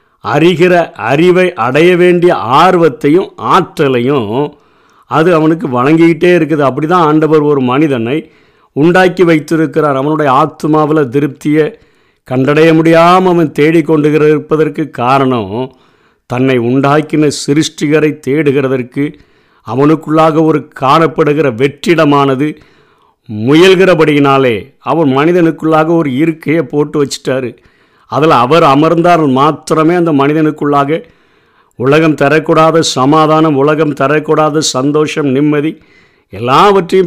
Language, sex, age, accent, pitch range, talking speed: Tamil, male, 50-69, native, 140-165 Hz, 85 wpm